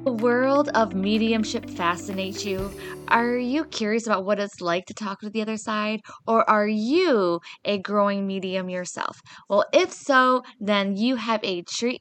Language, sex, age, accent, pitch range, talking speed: English, female, 20-39, American, 185-230 Hz, 170 wpm